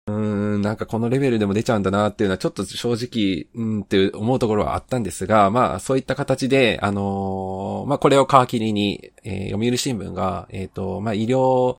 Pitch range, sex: 95-120 Hz, male